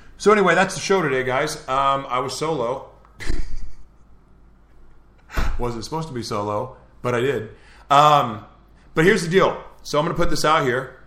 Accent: American